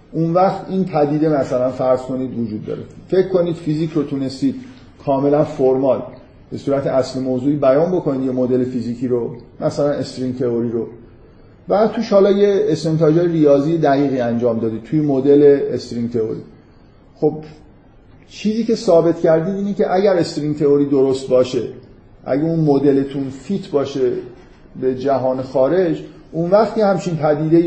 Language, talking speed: Persian, 145 wpm